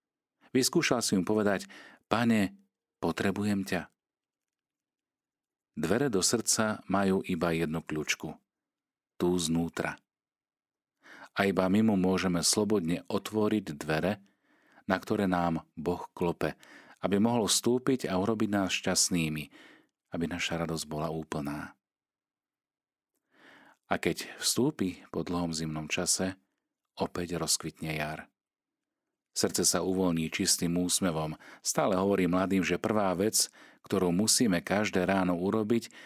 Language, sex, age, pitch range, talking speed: Slovak, male, 40-59, 80-100 Hz, 110 wpm